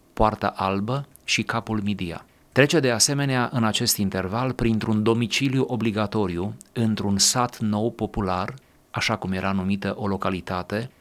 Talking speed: 130 wpm